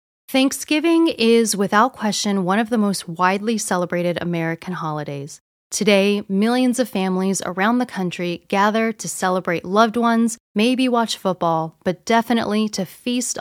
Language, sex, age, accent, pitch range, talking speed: English, female, 20-39, American, 175-230 Hz, 140 wpm